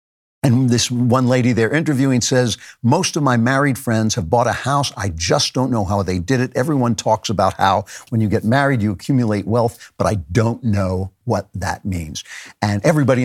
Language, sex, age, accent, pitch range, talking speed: English, male, 60-79, American, 105-135 Hz, 200 wpm